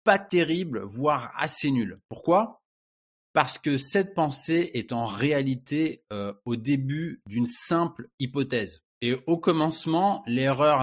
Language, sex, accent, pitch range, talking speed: French, male, French, 120-155 Hz, 120 wpm